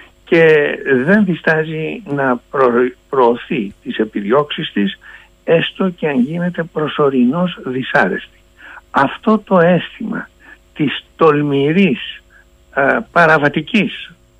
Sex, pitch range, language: male, 130-200 Hz, Greek